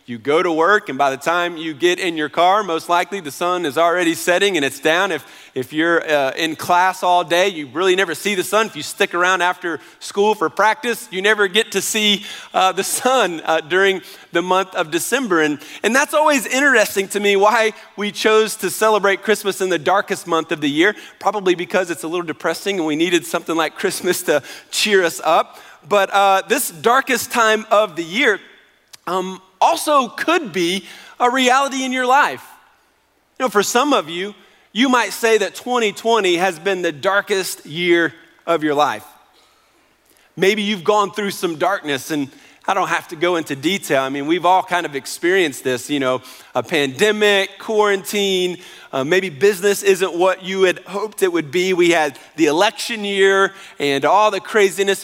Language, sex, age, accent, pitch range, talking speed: English, male, 40-59, American, 170-215 Hz, 195 wpm